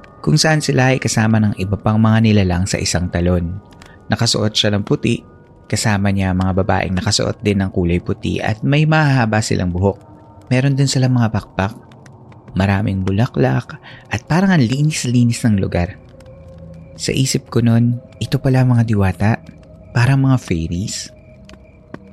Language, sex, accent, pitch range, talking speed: Filipino, male, native, 95-125 Hz, 150 wpm